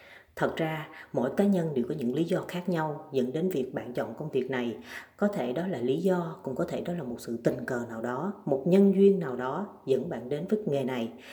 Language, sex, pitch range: Vietnamese, female, 135-195 Hz